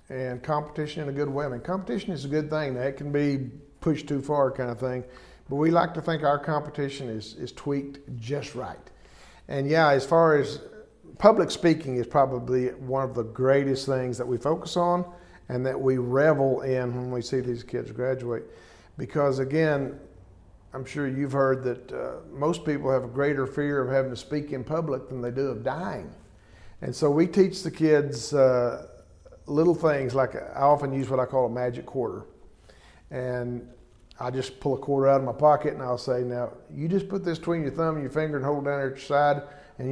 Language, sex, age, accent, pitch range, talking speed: English, male, 50-69, American, 125-150 Hz, 205 wpm